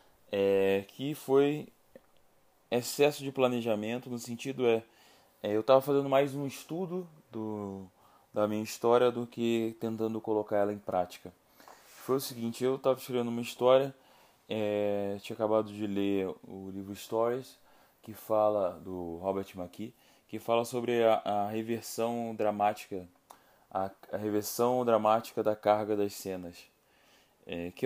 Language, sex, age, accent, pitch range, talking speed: Portuguese, male, 20-39, Brazilian, 105-125 Hz, 140 wpm